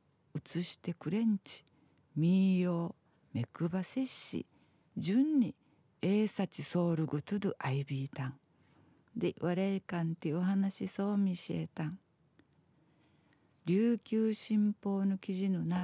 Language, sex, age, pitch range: Japanese, female, 50-69, 155-195 Hz